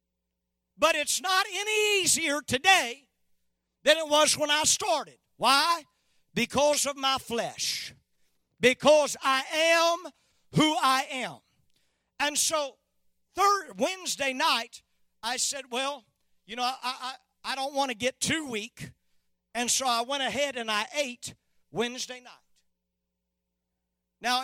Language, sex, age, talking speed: English, male, 50-69, 125 wpm